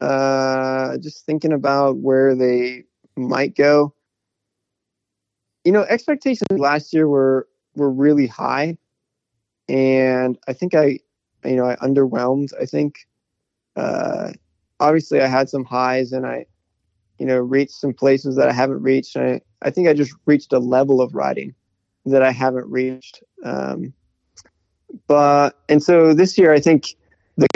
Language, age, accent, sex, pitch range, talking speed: English, 20-39, American, male, 125-145 Hz, 145 wpm